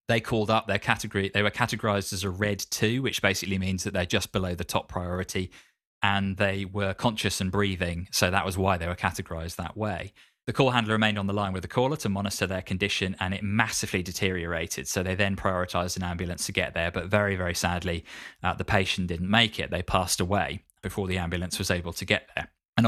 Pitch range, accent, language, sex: 90-105 Hz, British, English, male